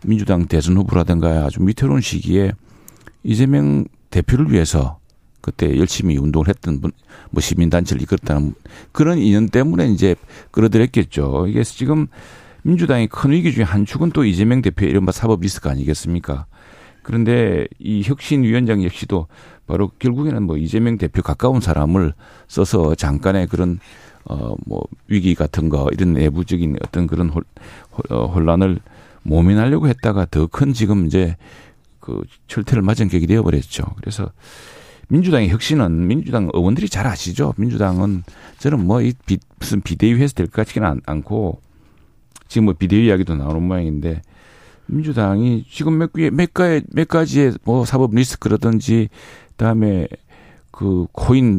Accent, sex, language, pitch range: native, male, Korean, 85-120 Hz